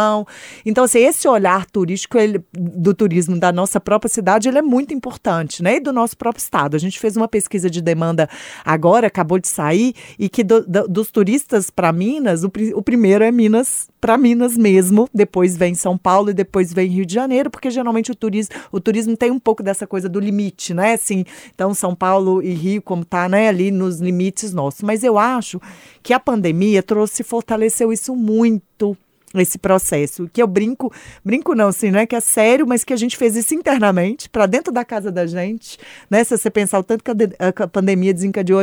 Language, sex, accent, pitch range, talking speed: Portuguese, female, Brazilian, 190-245 Hz, 215 wpm